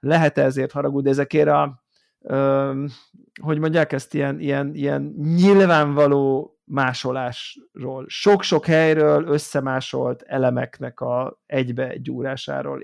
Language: Hungarian